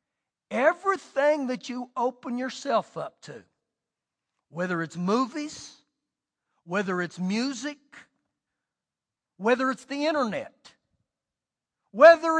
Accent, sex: American, male